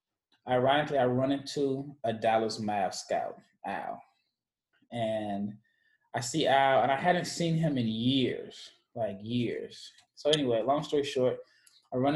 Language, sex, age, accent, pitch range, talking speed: English, male, 20-39, American, 115-140 Hz, 145 wpm